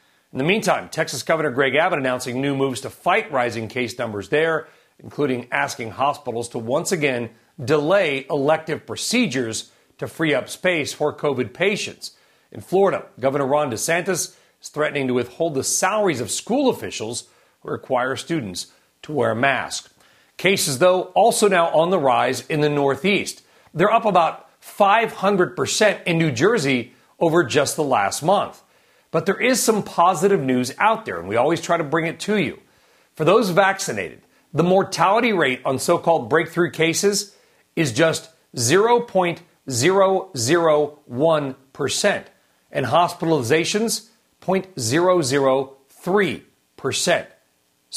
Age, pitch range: 40-59, 135-175 Hz